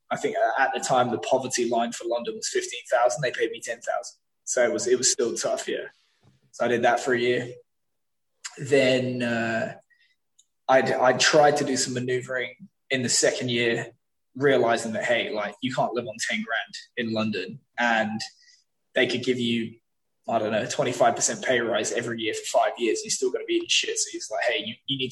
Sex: male